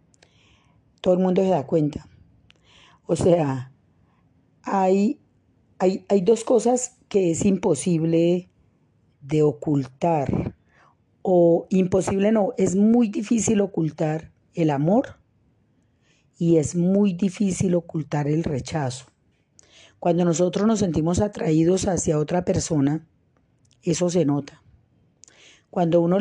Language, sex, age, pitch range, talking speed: Spanish, female, 40-59, 145-185 Hz, 105 wpm